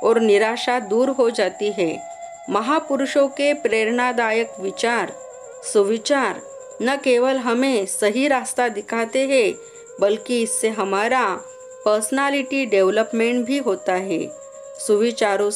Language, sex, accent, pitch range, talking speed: Marathi, female, native, 205-315 Hz, 75 wpm